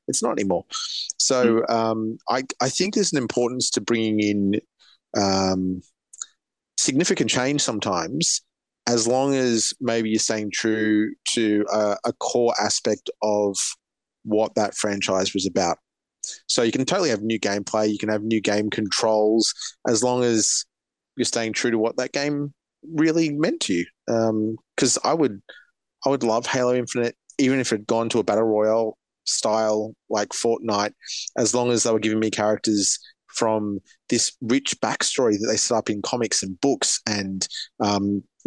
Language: English